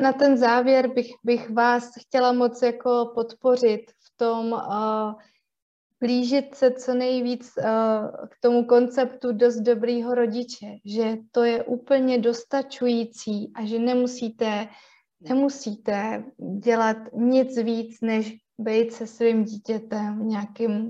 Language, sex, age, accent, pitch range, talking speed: Czech, female, 20-39, native, 220-260 Hz, 115 wpm